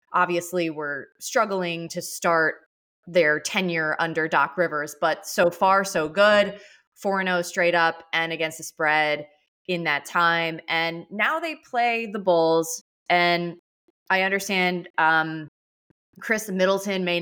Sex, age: female, 20-39